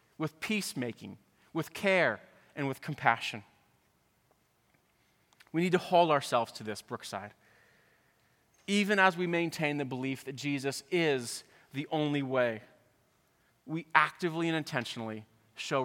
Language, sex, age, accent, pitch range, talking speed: English, male, 30-49, American, 135-185 Hz, 120 wpm